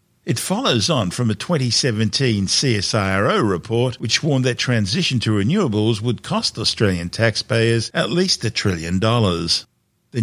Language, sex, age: English, male, 50-69